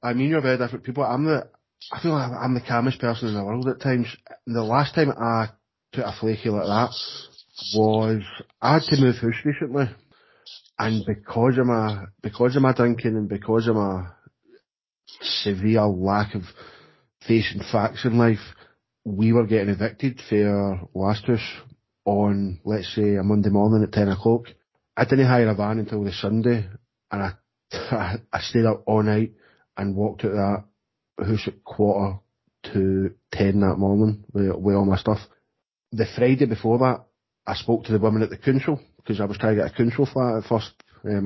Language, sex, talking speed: English, male, 180 wpm